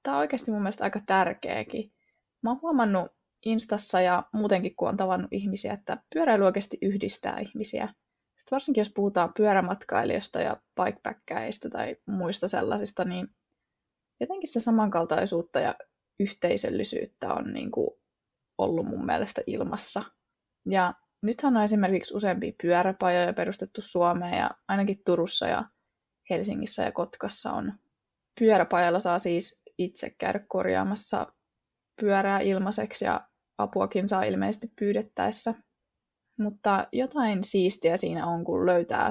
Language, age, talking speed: Finnish, 20-39, 125 wpm